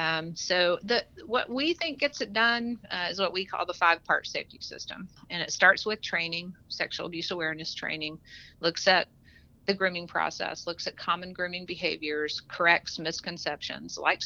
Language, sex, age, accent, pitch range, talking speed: English, female, 50-69, American, 160-195 Hz, 170 wpm